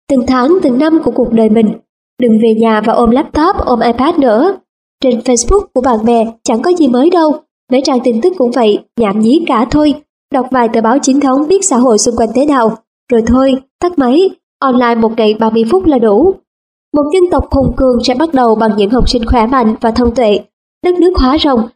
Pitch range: 230-300 Hz